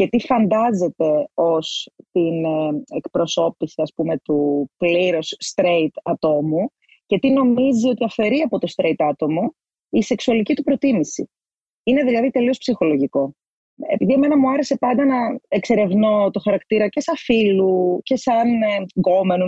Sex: female